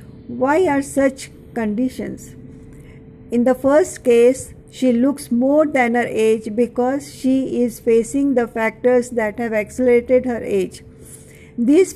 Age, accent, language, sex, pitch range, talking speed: 50-69, native, Hindi, female, 230-265 Hz, 130 wpm